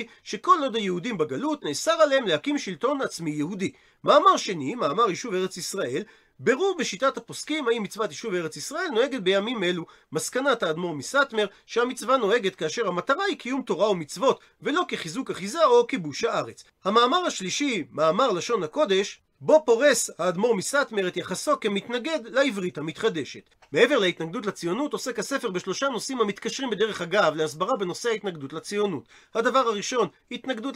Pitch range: 190-260 Hz